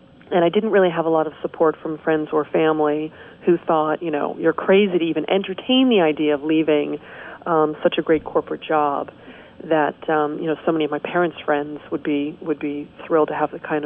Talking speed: 220 wpm